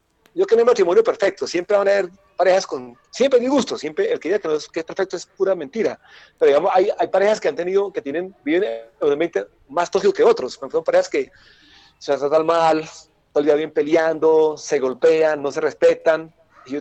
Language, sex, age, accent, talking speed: English, male, 40-59, Mexican, 225 wpm